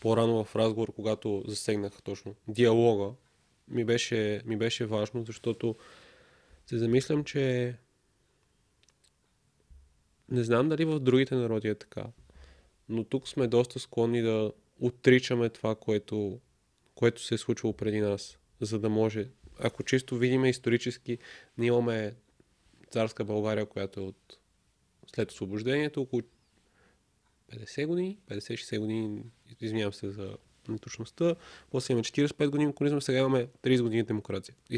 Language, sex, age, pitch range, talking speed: Bulgarian, male, 20-39, 105-130 Hz, 130 wpm